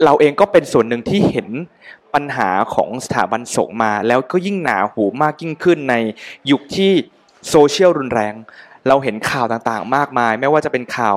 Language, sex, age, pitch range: Thai, male, 20-39, 120-150 Hz